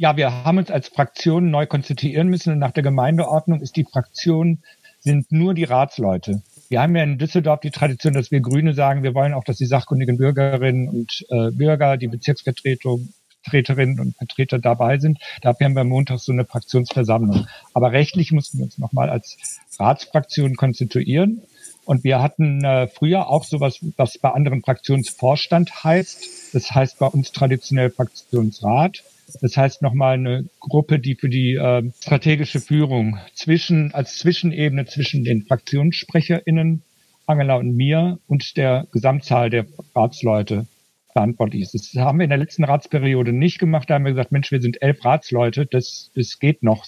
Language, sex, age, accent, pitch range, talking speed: German, male, 60-79, German, 125-155 Hz, 170 wpm